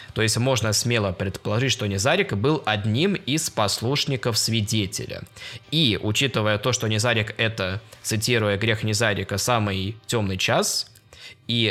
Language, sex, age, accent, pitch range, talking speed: Russian, male, 20-39, native, 105-130 Hz, 130 wpm